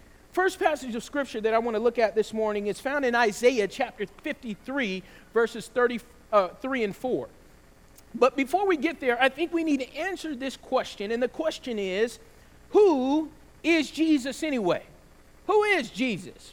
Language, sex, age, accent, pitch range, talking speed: English, male, 40-59, American, 230-325 Hz, 170 wpm